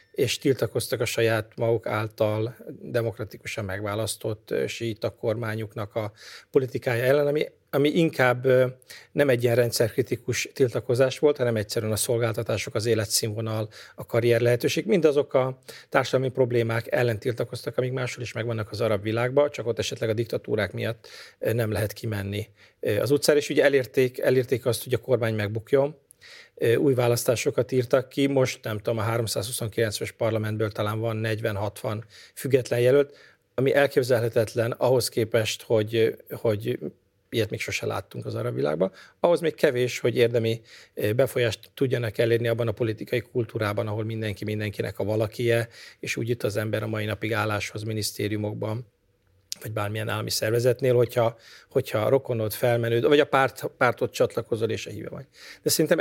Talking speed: 145 wpm